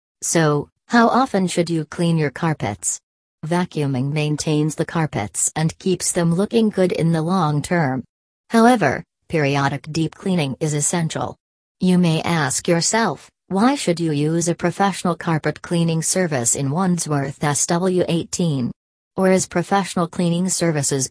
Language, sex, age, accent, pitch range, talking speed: English, female, 40-59, American, 150-175 Hz, 135 wpm